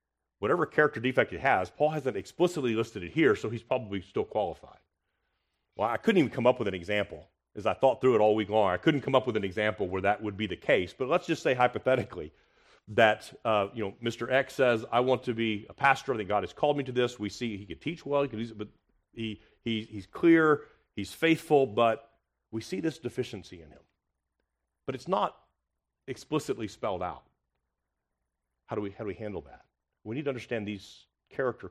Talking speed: 220 wpm